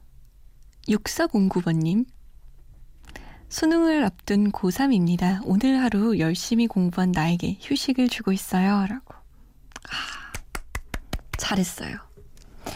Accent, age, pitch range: native, 20-39, 185-245 Hz